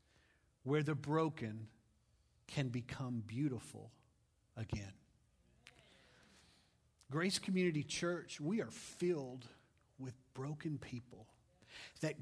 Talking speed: 85 wpm